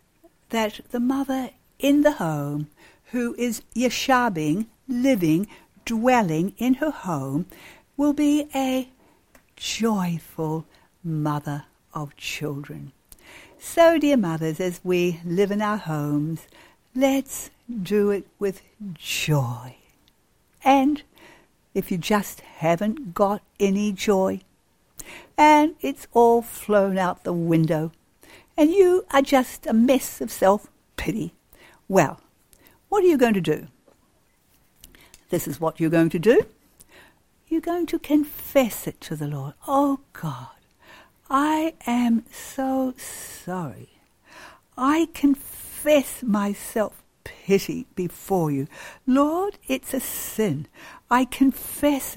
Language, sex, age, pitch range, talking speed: English, female, 60-79, 170-275 Hz, 115 wpm